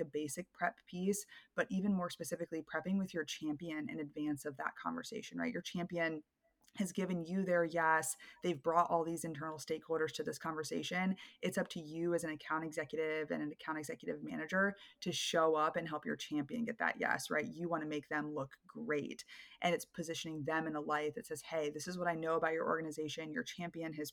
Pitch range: 155-185 Hz